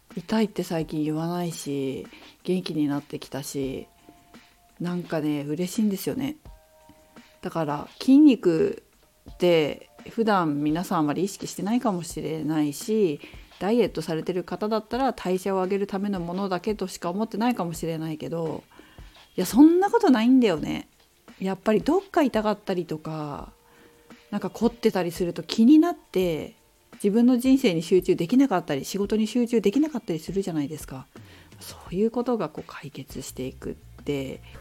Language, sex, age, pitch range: Japanese, female, 40-59, 155-215 Hz